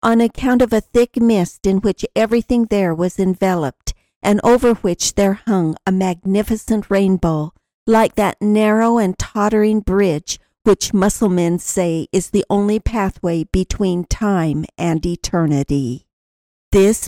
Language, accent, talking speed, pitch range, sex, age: English, American, 135 wpm, 185-220 Hz, female, 50-69